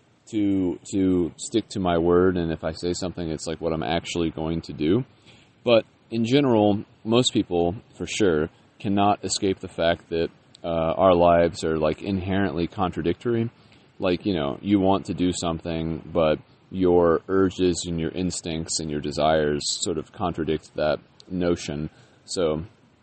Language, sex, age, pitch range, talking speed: English, male, 30-49, 80-105 Hz, 160 wpm